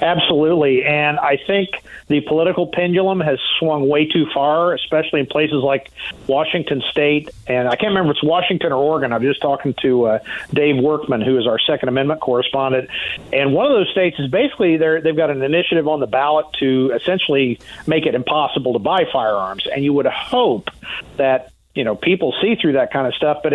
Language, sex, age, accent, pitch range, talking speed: English, male, 50-69, American, 140-175 Hz, 200 wpm